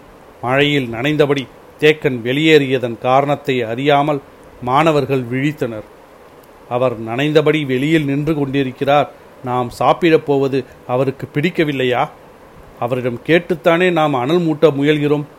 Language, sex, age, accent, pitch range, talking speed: Tamil, male, 40-59, native, 130-155 Hz, 90 wpm